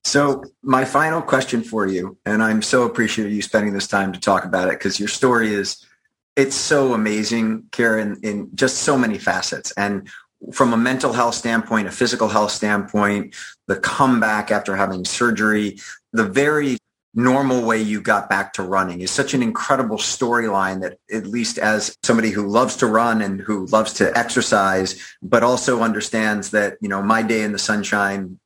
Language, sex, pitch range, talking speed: English, male, 100-115 Hz, 180 wpm